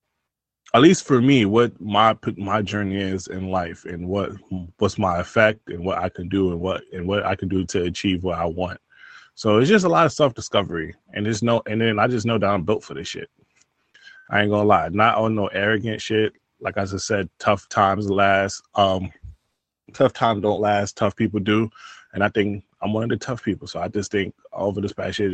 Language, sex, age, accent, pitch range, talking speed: English, male, 20-39, American, 100-115 Hz, 230 wpm